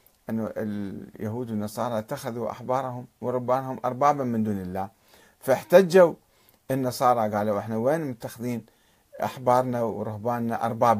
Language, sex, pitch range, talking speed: Arabic, male, 115-175 Hz, 105 wpm